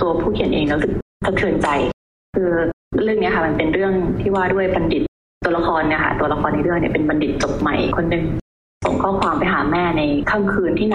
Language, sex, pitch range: Thai, female, 160-195 Hz